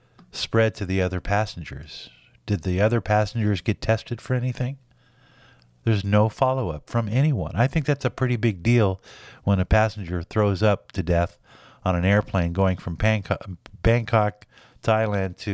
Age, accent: 50-69, American